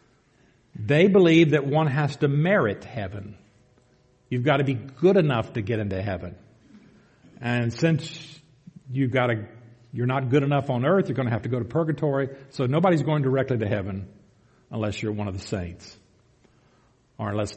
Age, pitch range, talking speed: 50-69, 115-145 Hz, 180 wpm